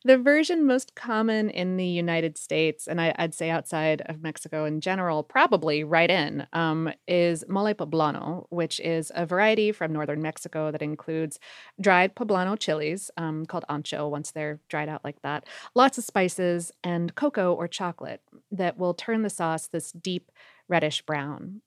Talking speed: 165 wpm